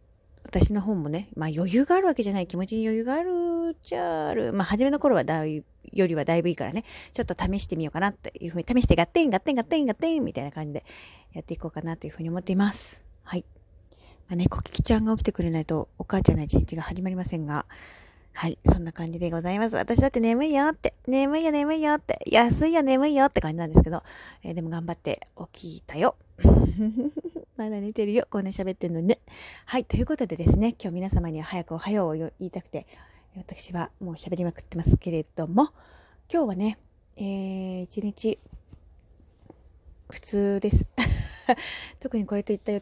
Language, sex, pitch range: Japanese, female, 165-230 Hz